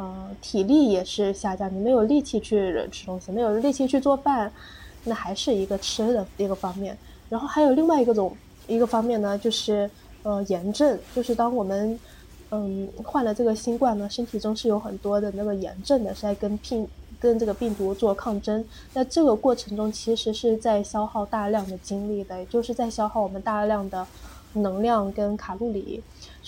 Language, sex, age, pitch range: Chinese, female, 10-29, 200-240 Hz